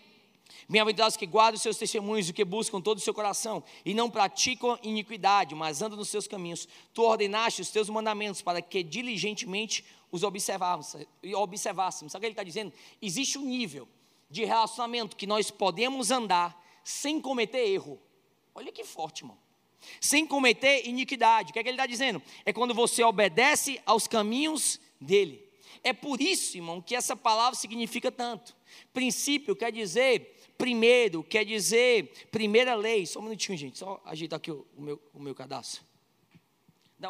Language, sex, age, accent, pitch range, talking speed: Portuguese, male, 20-39, Brazilian, 190-245 Hz, 165 wpm